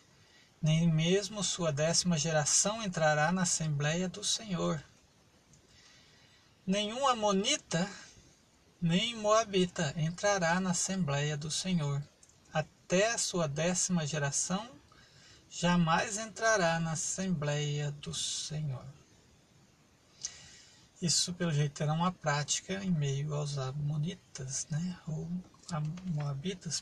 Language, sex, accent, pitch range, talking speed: Portuguese, male, Brazilian, 155-195 Hz, 95 wpm